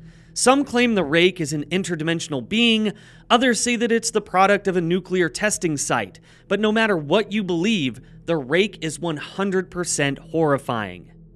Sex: male